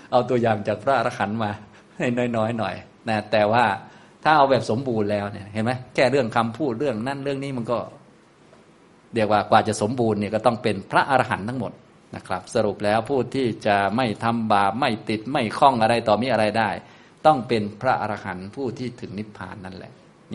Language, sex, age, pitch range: Thai, male, 20-39, 105-125 Hz